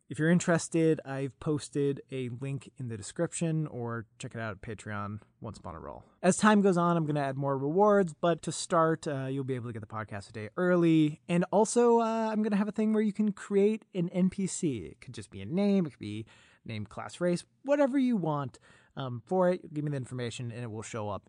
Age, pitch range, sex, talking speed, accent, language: 20-39, 115-170 Hz, male, 240 wpm, American, English